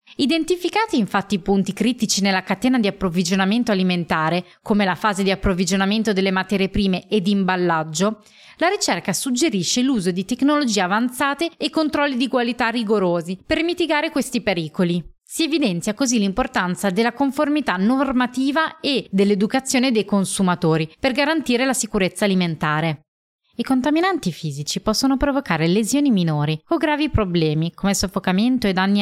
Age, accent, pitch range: 20-39, native, 185-245 Hz